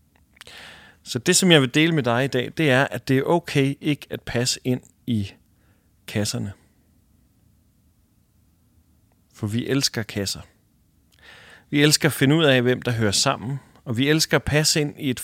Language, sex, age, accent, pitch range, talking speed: English, male, 40-59, Danish, 110-145 Hz, 175 wpm